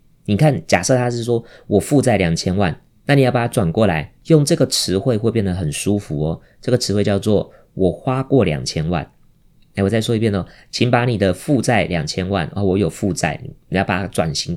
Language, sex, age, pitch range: Chinese, male, 20-39, 95-130 Hz